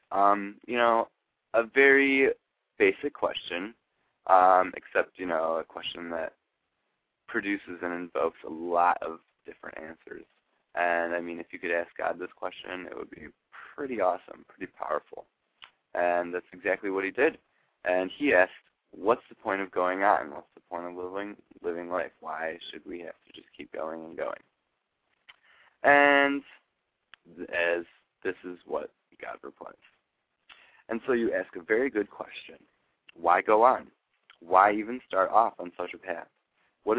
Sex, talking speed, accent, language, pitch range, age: male, 160 wpm, American, English, 90-115 Hz, 20-39